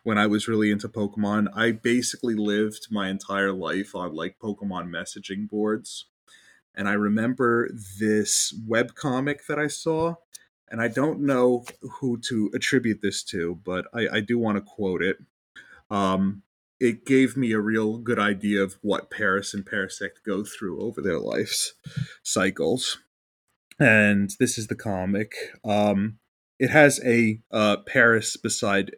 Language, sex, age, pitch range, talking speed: English, male, 30-49, 100-120 Hz, 150 wpm